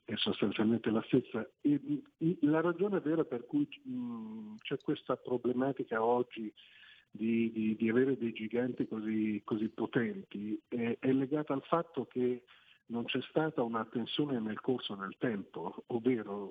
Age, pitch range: 50-69, 115-140 Hz